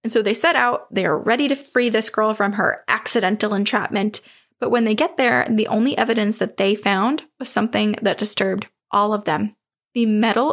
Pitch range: 205-235 Hz